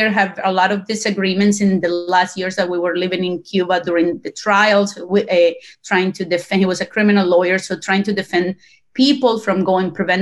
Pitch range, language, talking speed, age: 190-230 Hz, English, 210 wpm, 30-49